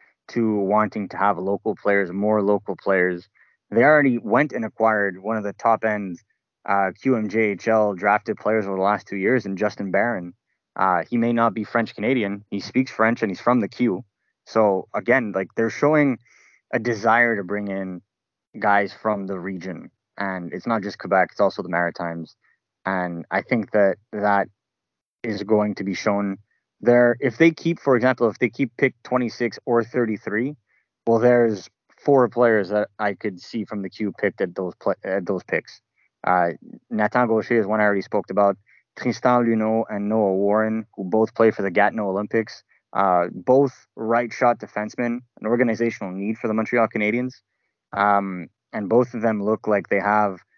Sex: male